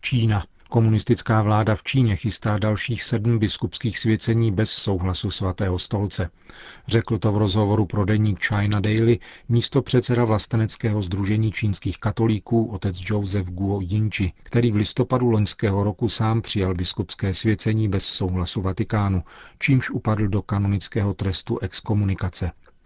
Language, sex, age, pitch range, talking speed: Czech, male, 40-59, 100-115 Hz, 130 wpm